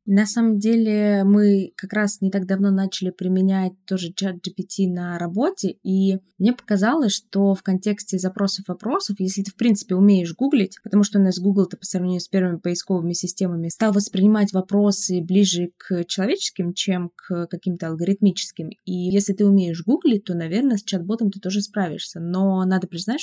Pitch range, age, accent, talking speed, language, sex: 180-200 Hz, 20-39, native, 165 wpm, Russian, female